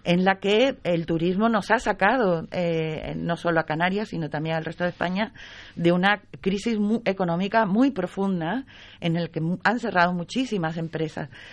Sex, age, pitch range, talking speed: female, 40-59, 170-215 Hz, 170 wpm